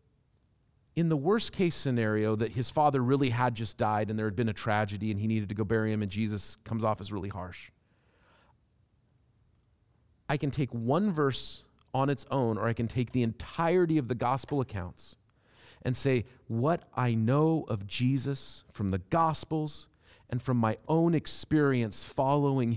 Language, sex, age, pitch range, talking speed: English, male, 40-59, 100-125 Hz, 175 wpm